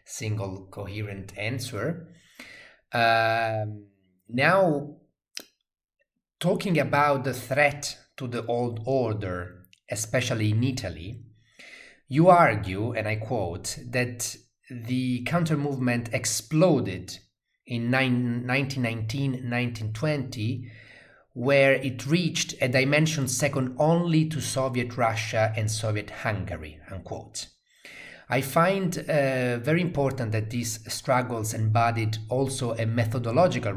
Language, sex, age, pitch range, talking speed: English, male, 30-49, 110-130 Hz, 95 wpm